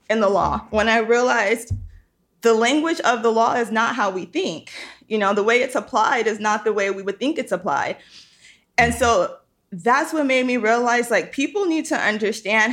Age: 20-39